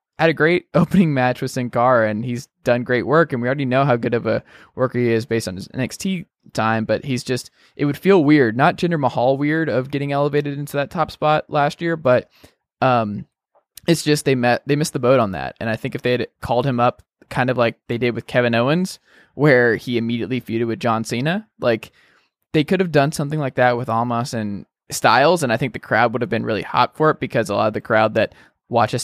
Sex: male